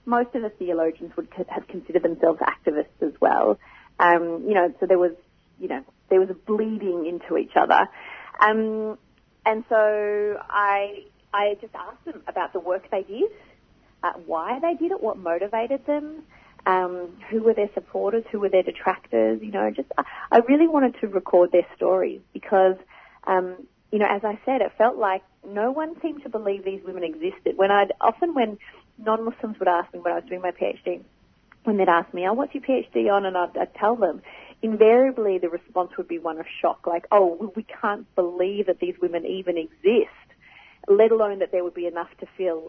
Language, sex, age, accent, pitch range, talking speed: English, female, 30-49, Australian, 180-225 Hz, 195 wpm